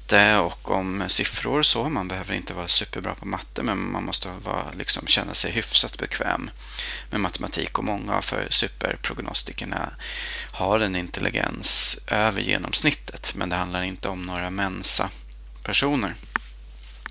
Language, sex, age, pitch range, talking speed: Swedish, male, 30-49, 90-105 Hz, 135 wpm